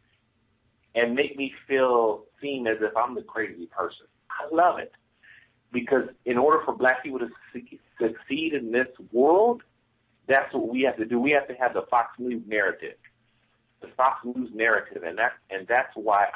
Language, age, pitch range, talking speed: English, 50-69, 115-140 Hz, 170 wpm